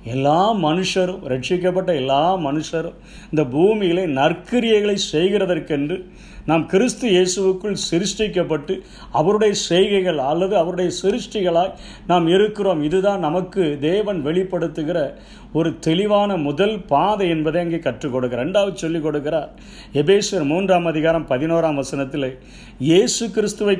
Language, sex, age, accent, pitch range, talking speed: Tamil, male, 50-69, native, 145-190 Hz, 105 wpm